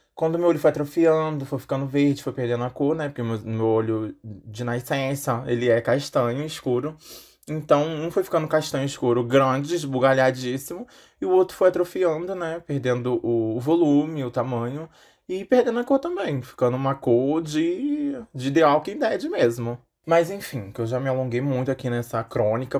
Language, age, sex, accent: Portuguese, 20-39, male, Brazilian